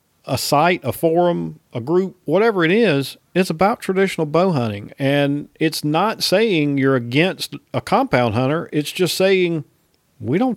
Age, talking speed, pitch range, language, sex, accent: 40-59, 160 wpm, 120-155 Hz, English, male, American